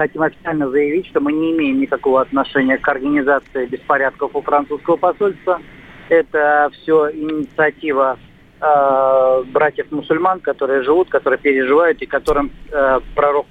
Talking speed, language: 125 wpm, Russian